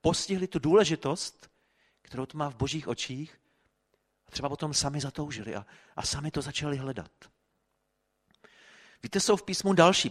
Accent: native